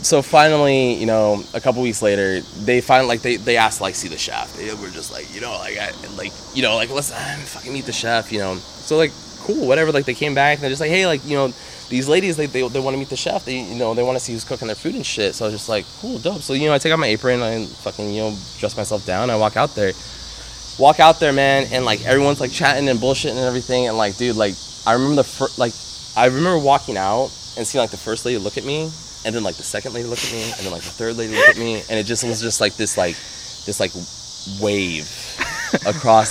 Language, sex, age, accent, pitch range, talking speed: English, male, 20-39, American, 110-140 Hz, 285 wpm